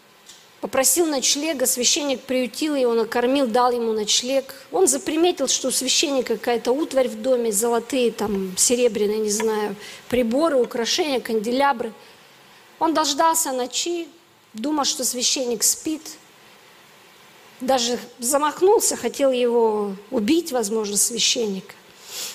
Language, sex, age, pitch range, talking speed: Russian, female, 40-59, 240-310 Hz, 105 wpm